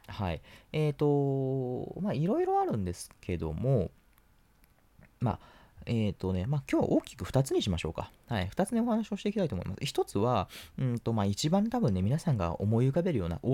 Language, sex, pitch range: Japanese, male, 90-145 Hz